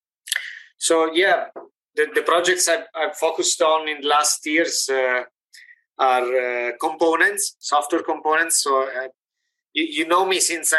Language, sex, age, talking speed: English, male, 30-49, 140 wpm